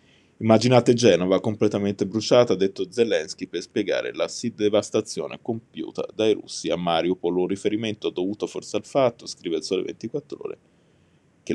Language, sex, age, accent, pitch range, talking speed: Italian, male, 20-39, native, 95-120 Hz, 150 wpm